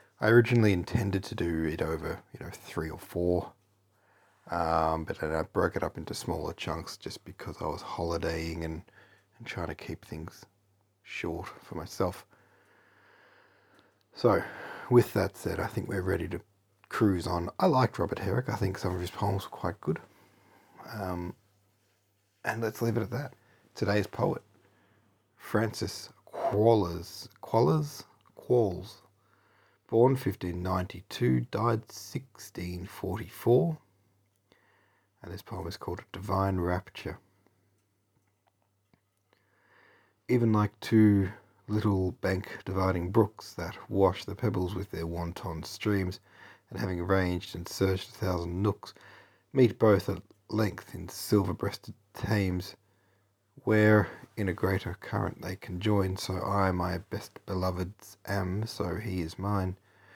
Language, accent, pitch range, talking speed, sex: English, Australian, 95-105 Hz, 130 wpm, male